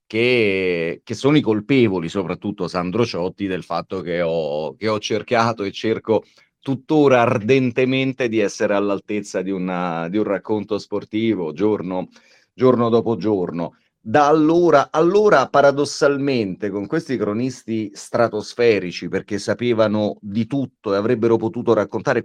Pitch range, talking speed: 100-125 Hz, 125 wpm